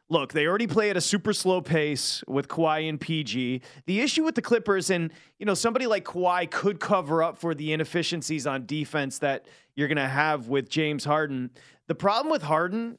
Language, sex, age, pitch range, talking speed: English, male, 30-49, 150-190 Hz, 205 wpm